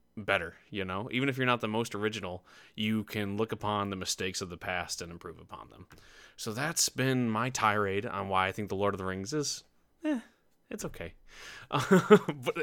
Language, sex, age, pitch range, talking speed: English, male, 20-39, 100-120 Hz, 200 wpm